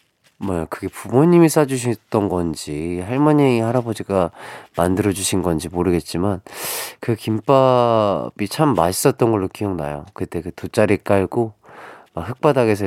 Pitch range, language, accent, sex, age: 95-140 Hz, Korean, native, male, 30-49